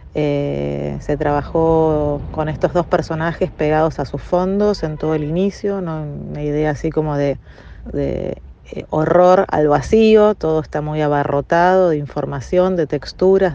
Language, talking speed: Spanish, 145 wpm